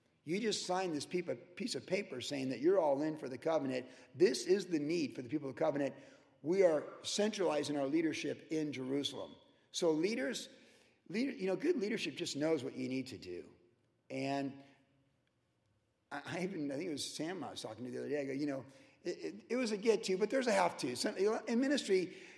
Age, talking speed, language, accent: 50-69, 205 wpm, English, American